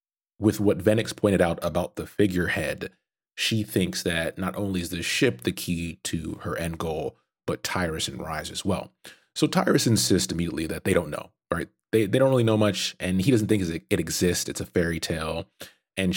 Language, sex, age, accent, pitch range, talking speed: English, male, 30-49, American, 85-105 Hz, 200 wpm